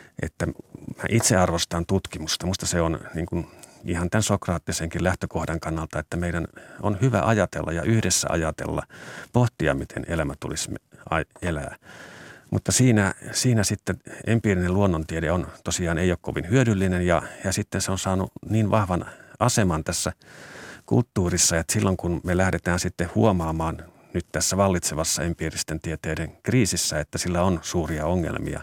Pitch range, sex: 85-95 Hz, male